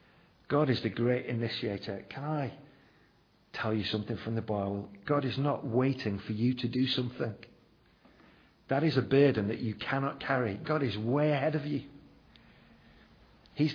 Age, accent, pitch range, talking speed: 50-69, British, 130-185 Hz, 160 wpm